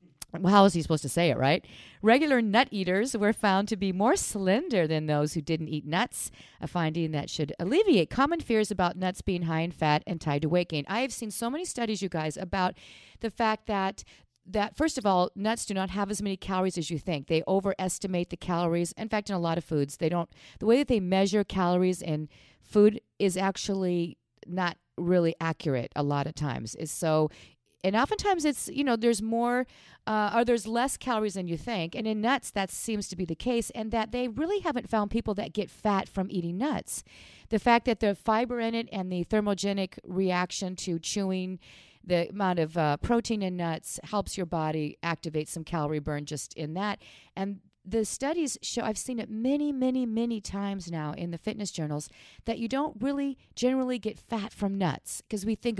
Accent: American